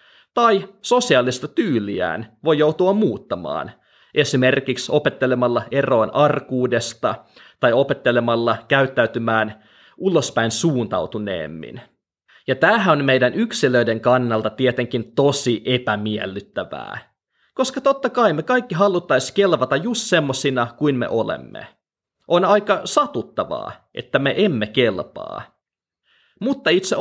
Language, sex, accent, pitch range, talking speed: Finnish, male, native, 120-185 Hz, 100 wpm